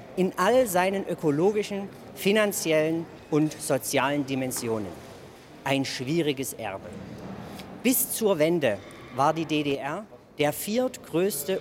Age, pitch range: 50-69, 135-175 Hz